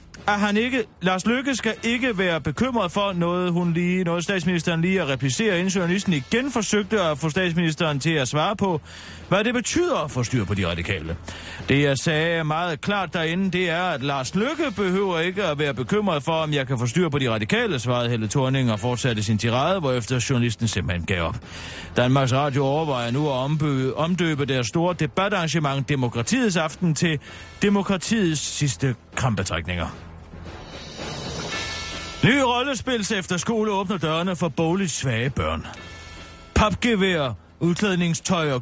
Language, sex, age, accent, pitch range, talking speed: Danish, male, 30-49, native, 125-185 Hz, 160 wpm